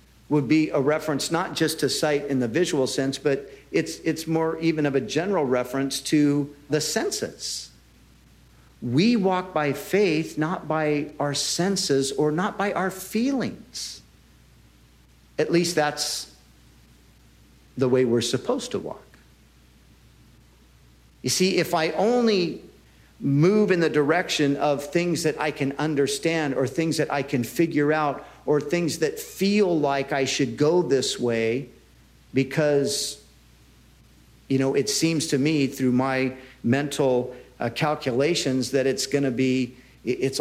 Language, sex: English, male